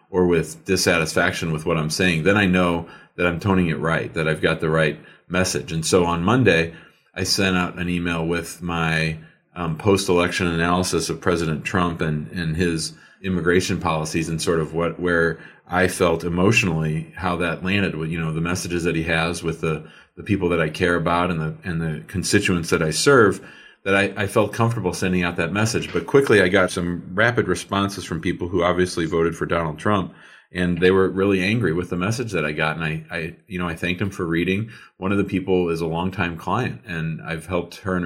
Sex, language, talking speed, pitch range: male, English, 215 wpm, 85-95 Hz